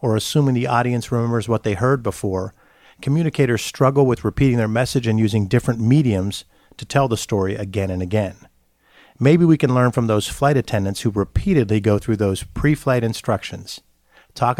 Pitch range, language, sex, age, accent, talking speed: 105-130 Hz, English, male, 50-69, American, 175 wpm